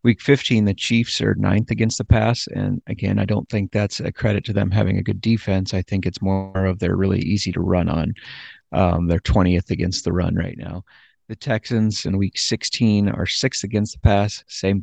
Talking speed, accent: 215 wpm, American